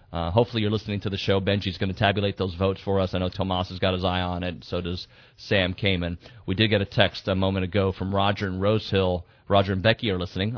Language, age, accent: English, 30-49, American